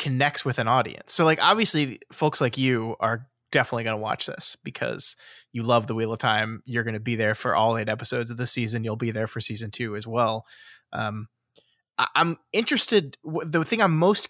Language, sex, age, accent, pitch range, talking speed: English, male, 20-39, American, 120-150 Hz, 220 wpm